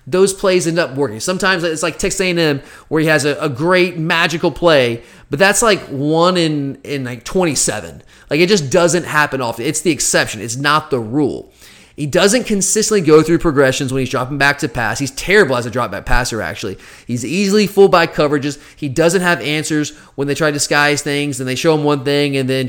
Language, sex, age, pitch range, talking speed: English, male, 30-49, 140-175 Hz, 215 wpm